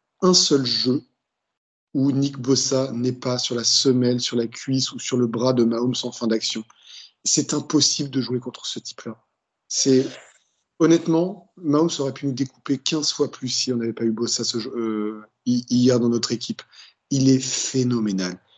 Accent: French